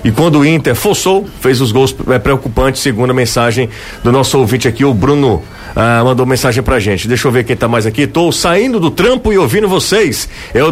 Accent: Brazilian